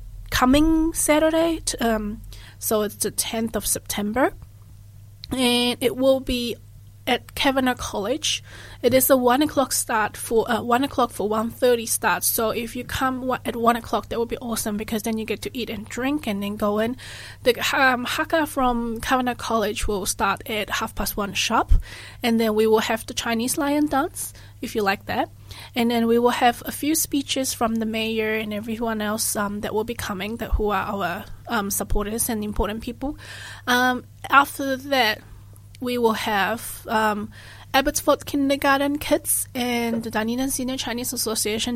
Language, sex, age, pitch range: Chinese, female, 20-39, 215-255 Hz